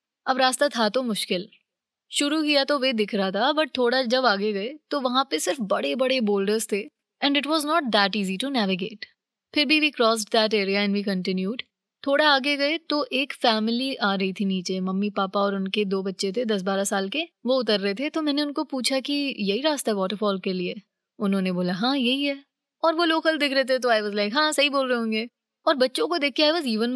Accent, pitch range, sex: native, 205-270 Hz, female